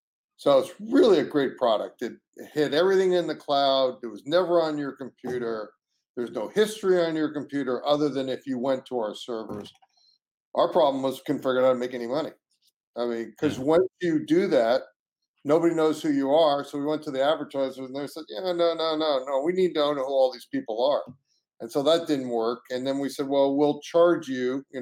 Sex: male